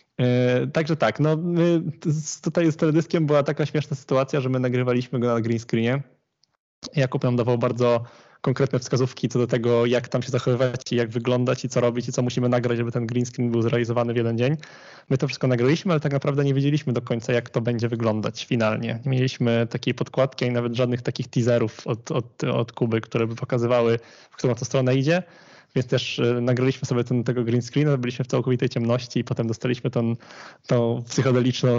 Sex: male